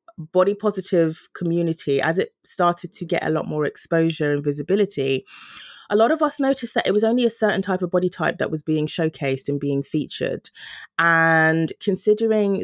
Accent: British